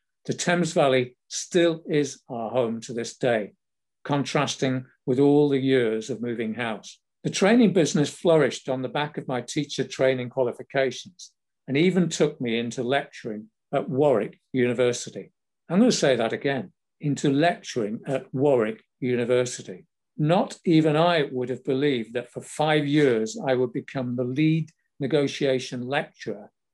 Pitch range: 125-160 Hz